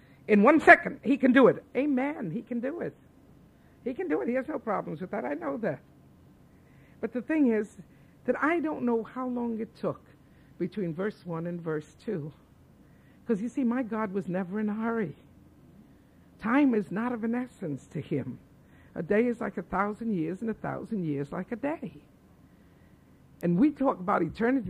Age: 60-79